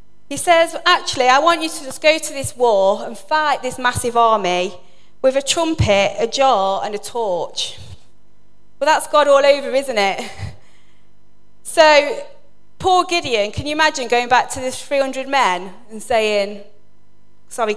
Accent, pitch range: British, 195-275 Hz